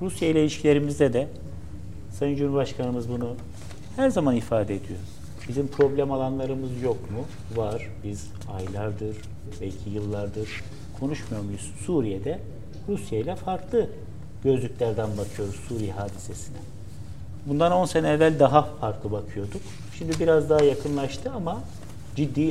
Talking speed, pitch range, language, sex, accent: 115 wpm, 100-130 Hz, Turkish, male, native